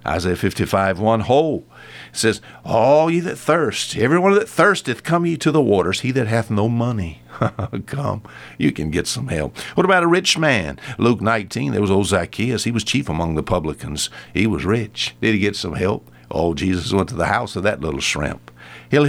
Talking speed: 205 wpm